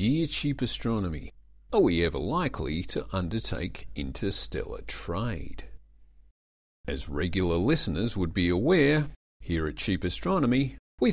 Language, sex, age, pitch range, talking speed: English, male, 40-59, 80-125 Hz, 120 wpm